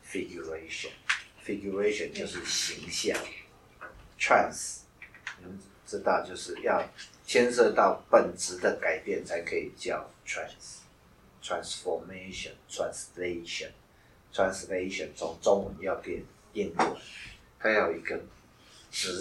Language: Chinese